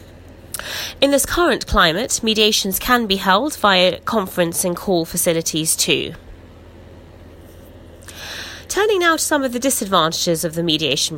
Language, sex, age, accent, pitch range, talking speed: English, female, 20-39, British, 165-240 Hz, 130 wpm